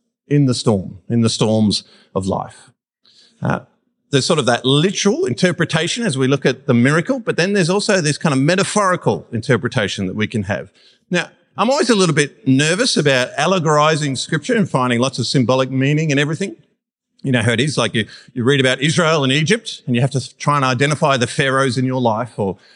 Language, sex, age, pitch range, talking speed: English, male, 40-59, 125-165 Hz, 205 wpm